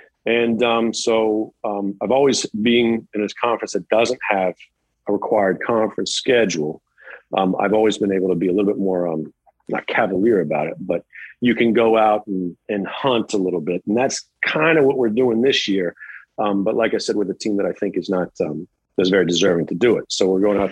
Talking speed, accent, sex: 225 wpm, American, male